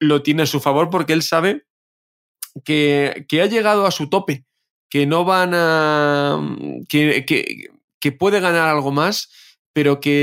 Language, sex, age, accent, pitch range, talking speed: Spanish, male, 20-39, Spanish, 135-165 Hz, 165 wpm